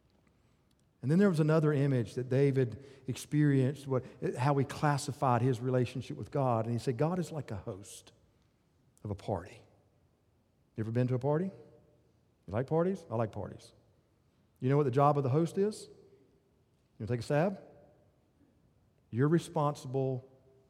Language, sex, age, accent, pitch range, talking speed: English, male, 50-69, American, 110-150 Hz, 160 wpm